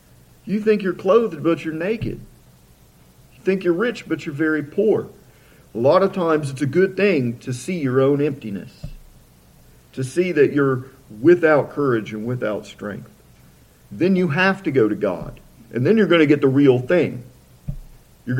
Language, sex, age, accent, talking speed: English, male, 50-69, American, 175 wpm